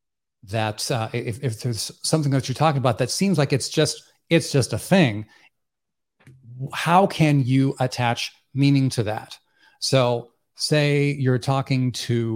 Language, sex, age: English, male, 40-59